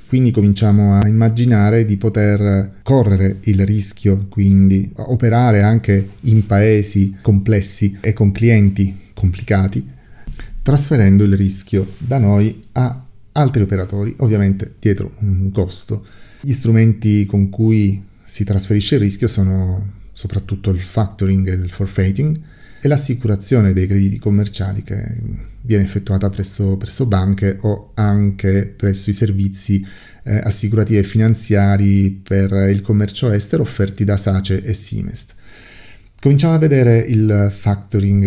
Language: Italian